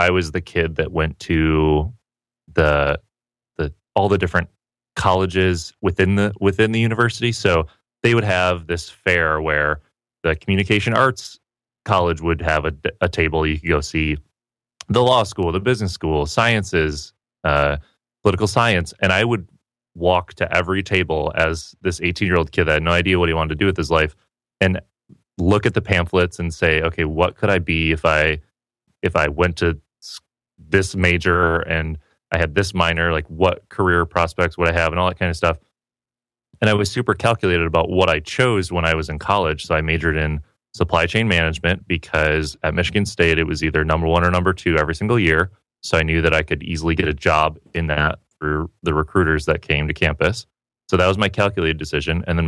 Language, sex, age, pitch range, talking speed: English, male, 30-49, 80-100 Hz, 195 wpm